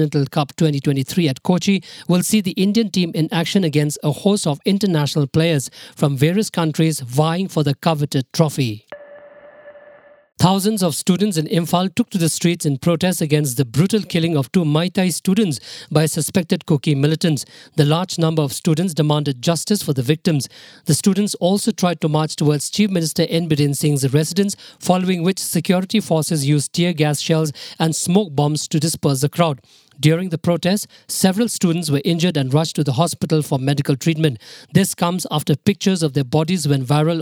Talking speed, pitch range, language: 175 wpm, 150-190 Hz, English